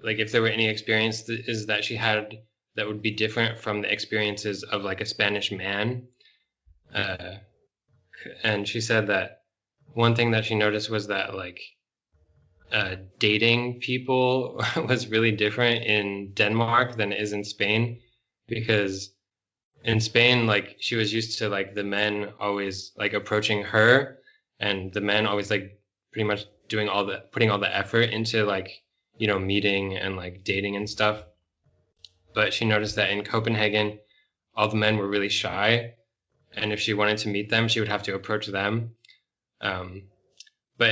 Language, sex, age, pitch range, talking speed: English, male, 20-39, 100-115 Hz, 165 wpm